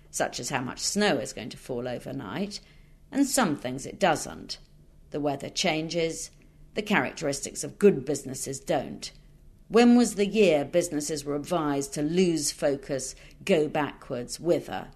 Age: 50-69